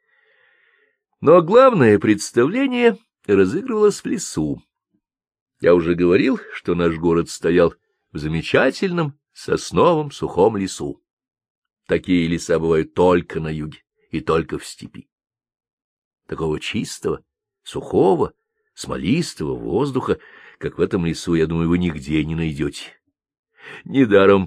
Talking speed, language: 110 wpm, Russian